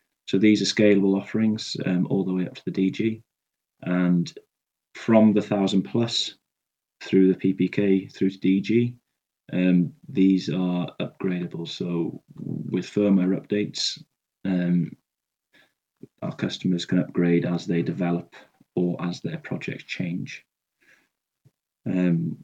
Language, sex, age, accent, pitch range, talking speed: English, male, 30-49, British, 90-100 Hz, 125 wpm